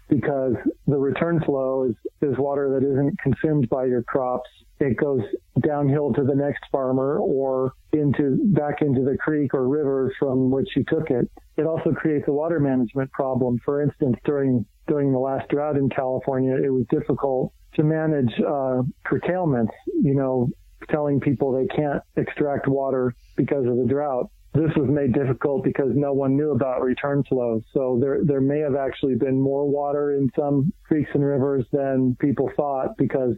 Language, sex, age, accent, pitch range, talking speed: English, male, 40-59, American, 130-145 Hz, 175 wpm